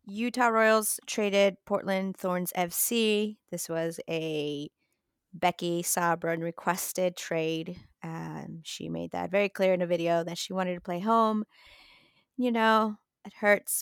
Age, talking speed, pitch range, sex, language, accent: 30-49, 140 wpm, 170-210 Hz, female, English, American